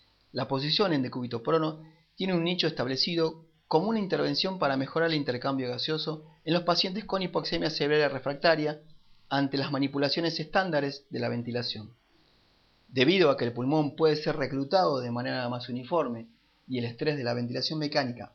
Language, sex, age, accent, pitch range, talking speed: Spanish, male, 30-49, Argentinian, 125-160 Hz, 165 wpm